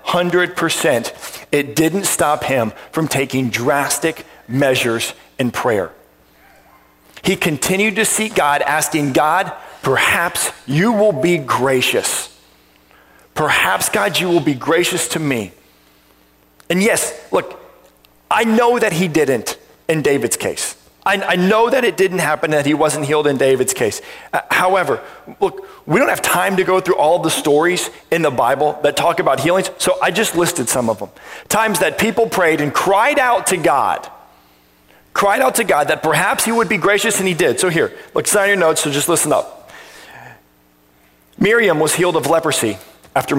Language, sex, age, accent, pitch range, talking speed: English, male, 40-59, American, 135-190 Hz, 170 wpm